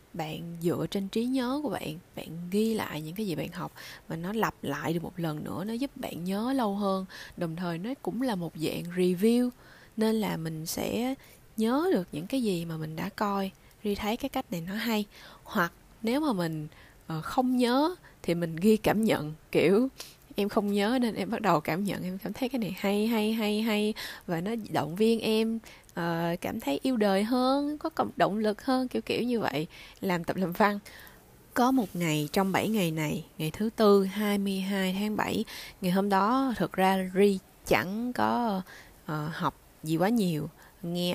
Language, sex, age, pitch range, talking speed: Vietnamese, female, 20-39, 170-225 Hz, 200 wpm